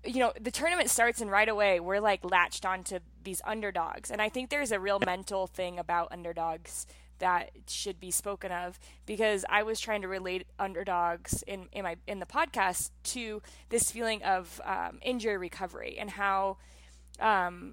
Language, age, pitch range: English, 20-39, 175-215 Hz